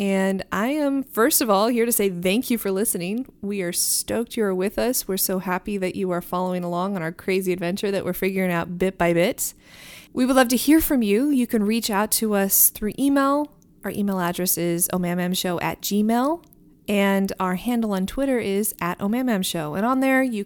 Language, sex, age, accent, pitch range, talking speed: English, female, 20-39, American, 190-240 Hz, 215 wpm